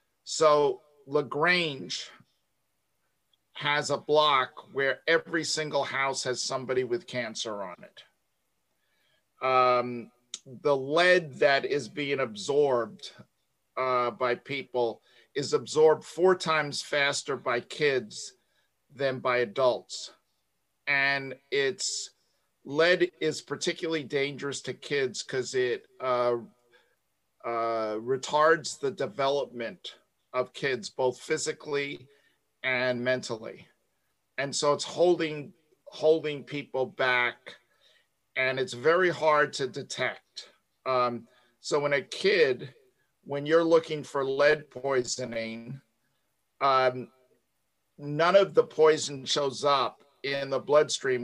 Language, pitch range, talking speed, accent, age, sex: English, 130-165 Hz, 105 wpm, American, 50-69, male